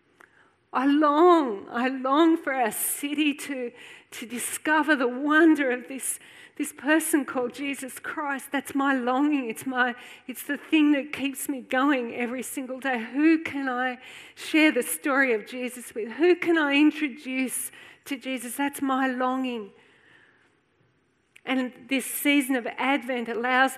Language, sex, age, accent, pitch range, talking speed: English, female, 40-59, Australian, 255-300 Hz, 145 wpm